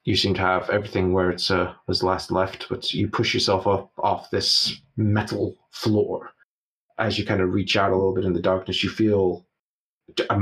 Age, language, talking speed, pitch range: 30-49, English, 195 wpm, 90-105 Hz